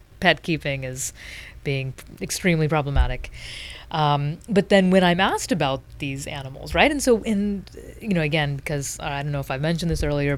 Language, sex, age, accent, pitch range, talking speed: English, female, 30-49, American, 140-190 Hz, 190 wpm